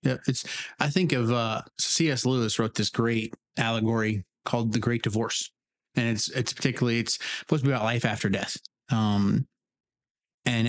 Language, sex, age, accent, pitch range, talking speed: English, male, 20-39, American, 115-130 Hz, 170 wpm